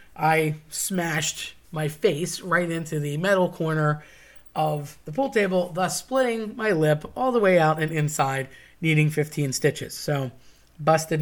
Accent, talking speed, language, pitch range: American, 150 wpm, English, 150-195 Hz